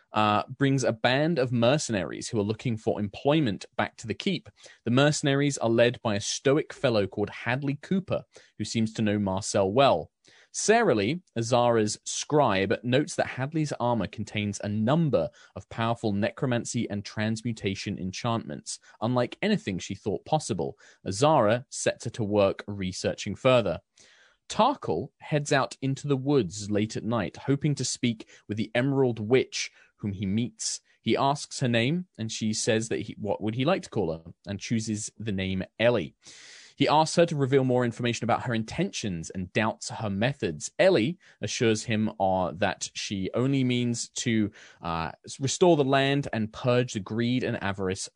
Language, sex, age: English, male, 20-39